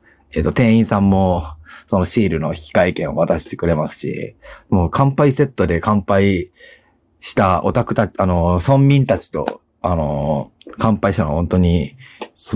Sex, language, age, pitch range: male, Japanese, 40-59, 85-120 Hz